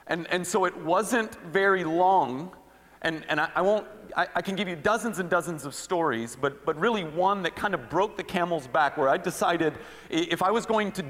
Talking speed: 220 wpm